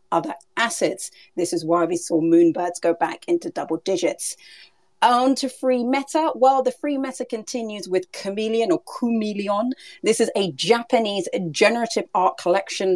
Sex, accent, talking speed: female, British, 155 wpm